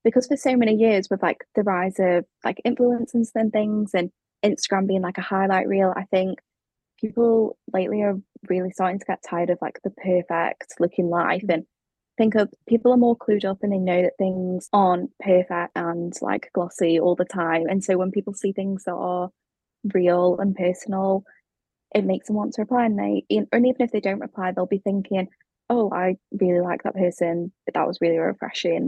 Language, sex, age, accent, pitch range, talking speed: English, female, 10-29, British, 180-210 Hz, 195 wpm